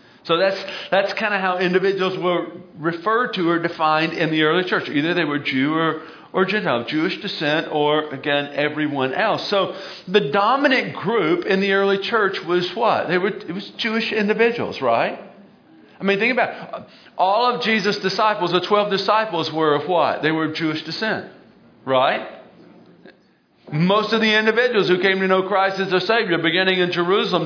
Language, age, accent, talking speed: English, 50-69, American, 180 wpm